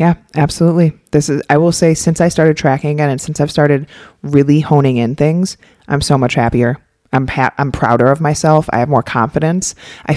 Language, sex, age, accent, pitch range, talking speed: English, female, 30-49, American, 125-155 Hz, 205 wpm